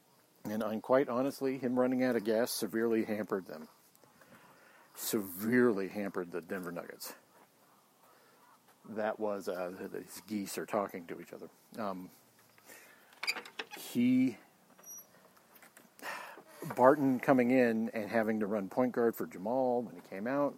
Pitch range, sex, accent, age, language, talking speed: 100-130 Hz, male, American, 50-69, English, 125 wpm